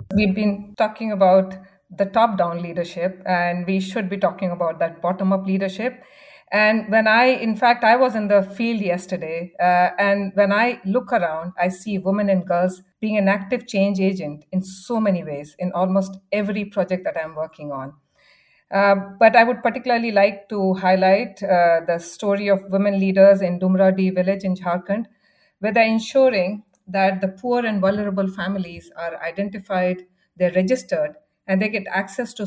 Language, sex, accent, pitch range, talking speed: English, female, Indian, 185-215 Hz, 175 wpm